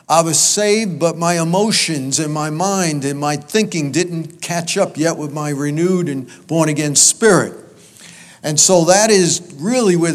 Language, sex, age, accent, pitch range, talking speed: English, male, 50-69, American, 150-185 Hz, 165 wpm